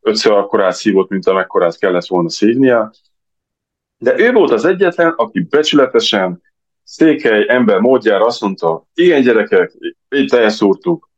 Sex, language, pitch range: male, Hungarian, 90-120 Hz